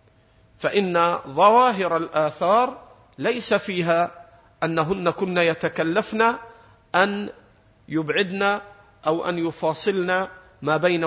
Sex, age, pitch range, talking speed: male, 50-69, 130-200 Hz, 80 wpm